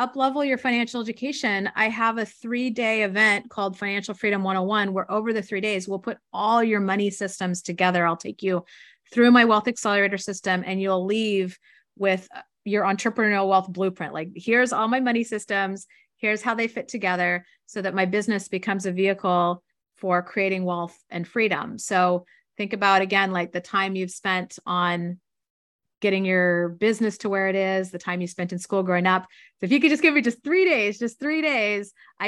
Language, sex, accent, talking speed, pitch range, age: English, female, American, 195 wpm, 185-220 Hz, 30-49